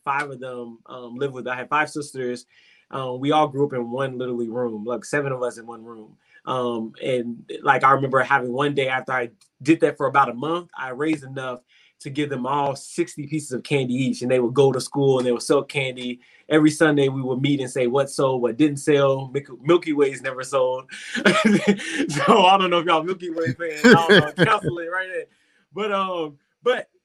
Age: 20-39